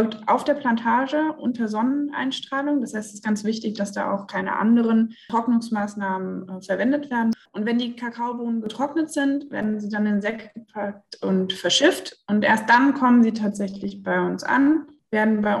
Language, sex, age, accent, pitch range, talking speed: German, female, 20-39, German, 200-235 Hz, 170 wpm